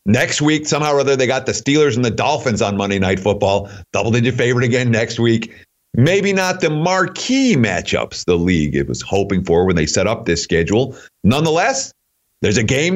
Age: 50-69